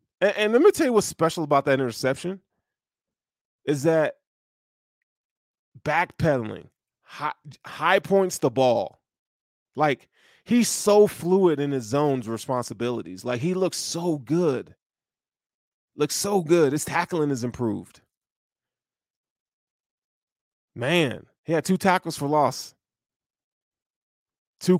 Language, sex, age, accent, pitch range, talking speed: English, male, 20-39, American, 125-180 Hz, 110 wpm